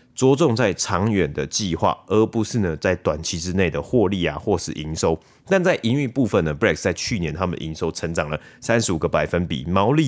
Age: 30-49